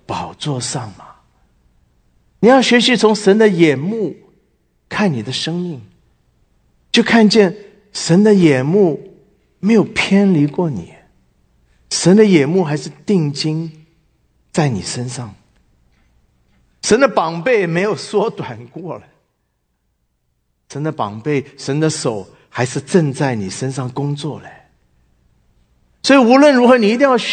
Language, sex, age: English, male, 50-69